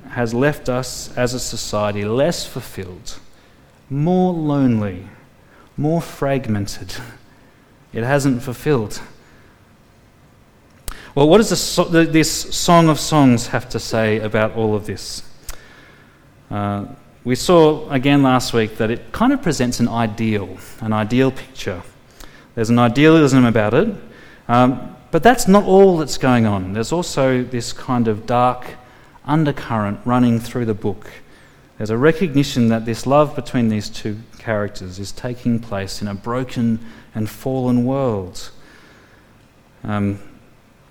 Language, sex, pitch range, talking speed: English, male, 115-145 Hz, 130 wpm